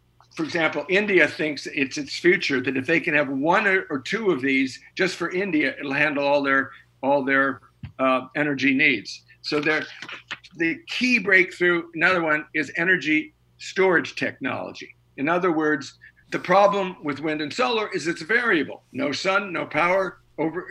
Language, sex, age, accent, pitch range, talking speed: English, male, 50-69, American, 135-185 Hz, 165 wpm